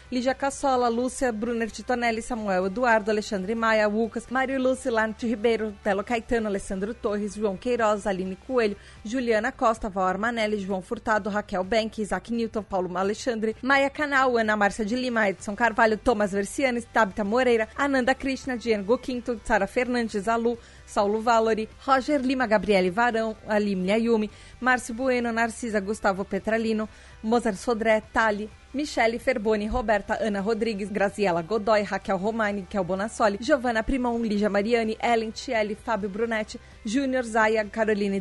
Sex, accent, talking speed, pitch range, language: female, Brazilian, 145 wpm, 205-235 Hz, Portuguese